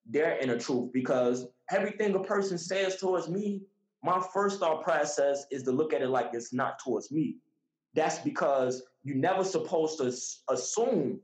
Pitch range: 130-185 Hz